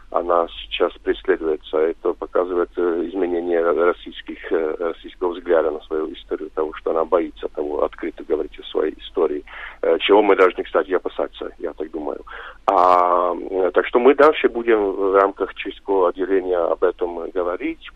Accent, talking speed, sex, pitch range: Czech, 155 wpm, male, 340-445 Hz